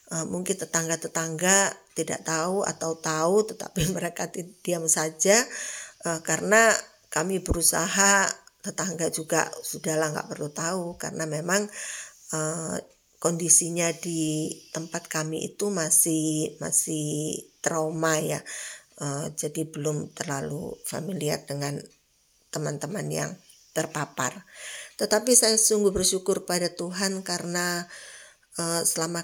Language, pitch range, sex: Indonesian, 160-190 Hz, female